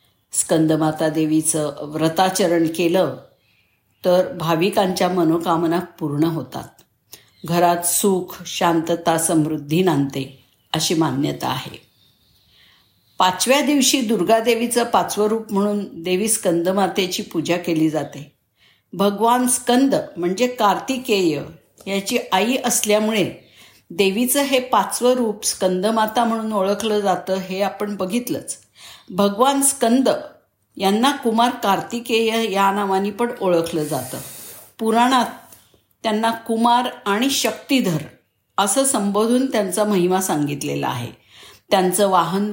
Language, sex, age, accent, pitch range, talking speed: Marathi, female, 50-69, native, 165-225 Hz, 100 wpm